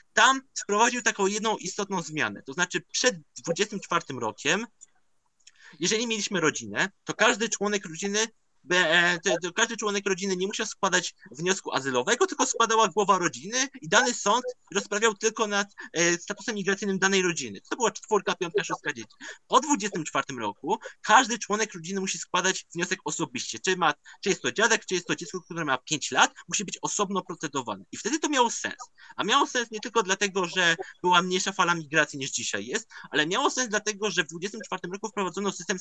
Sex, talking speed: male, 180 wpm